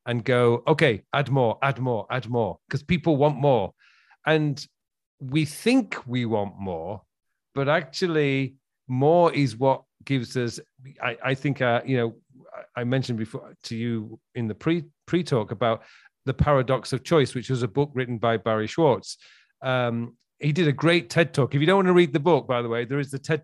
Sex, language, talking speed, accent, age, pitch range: male, English, 195 wpm, British, 40-59, 120-150 Hz